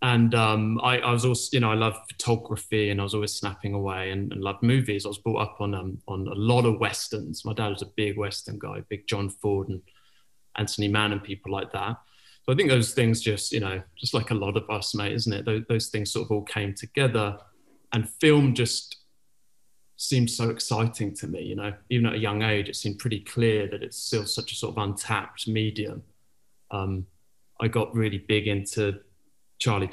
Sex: male